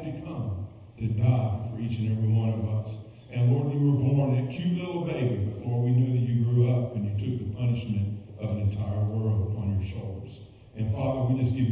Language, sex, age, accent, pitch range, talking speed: English, male, 50-69, American, 110-135 Hz, 230 wpm